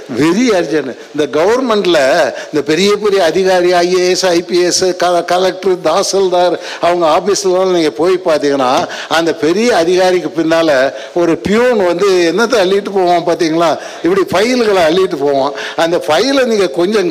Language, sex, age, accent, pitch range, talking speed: English, male, 60-79, Indian, 175-280 Hz, 140 wpm